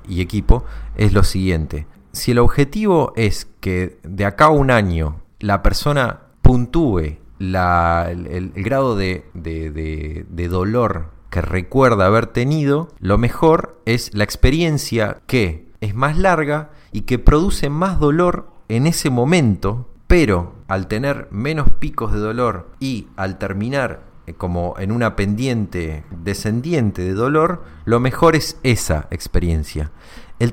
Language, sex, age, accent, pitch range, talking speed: Spanish, male, 30-49, Argentinian, 95-140 Hz, 140 wpm